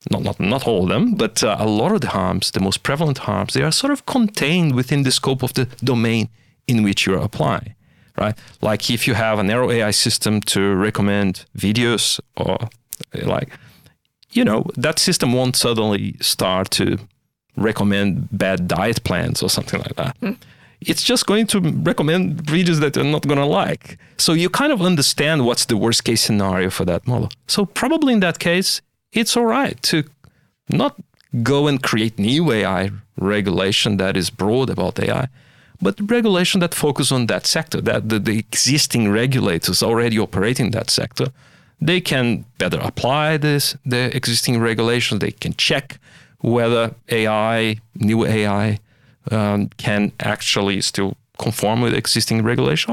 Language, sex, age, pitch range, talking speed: English, male, 40-59, 105-150 Hz, 170 wpm